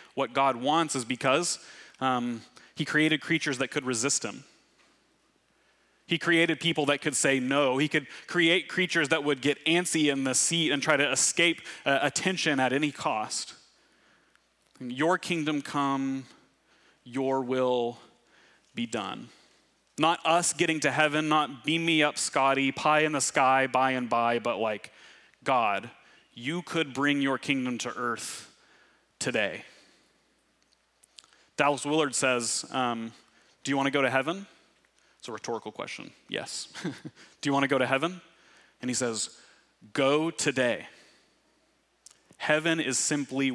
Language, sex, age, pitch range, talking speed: English, male, 30-49, 130-155 Hz, 145 wpm